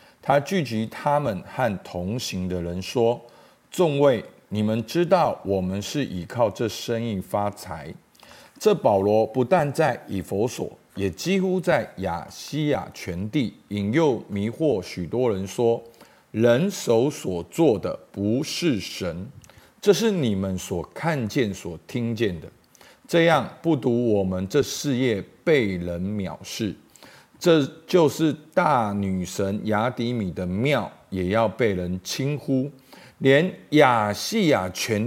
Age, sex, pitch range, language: 50-69, male, 100-160 Hz, Chinese